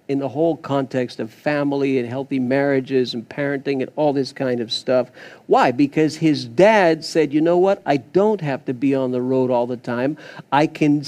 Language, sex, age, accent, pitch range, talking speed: English, male, 50-69, American, 135-170 Hz, 205 wpm